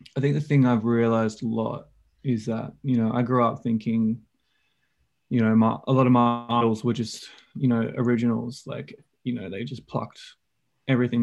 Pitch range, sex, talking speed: 115-125 Hz, male, 190 wpm